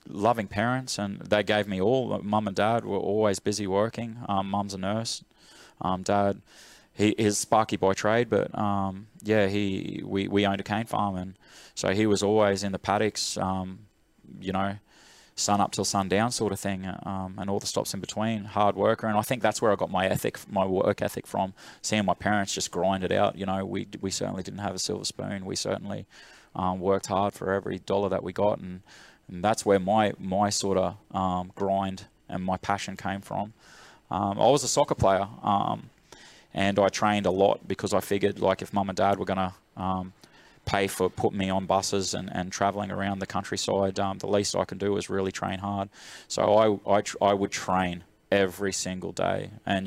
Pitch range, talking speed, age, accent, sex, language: 95-105 Hz, 210 wpm, 20-39, Australian, male, English